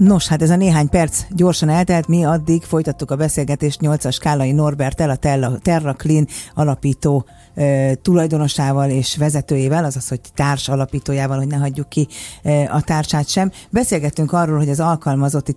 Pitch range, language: 140-165 Hz, Hungarian